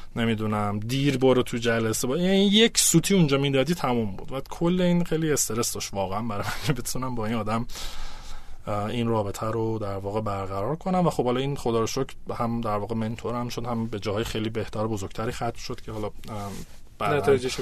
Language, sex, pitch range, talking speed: Persian, male, 105-145 Hz, 200 wpm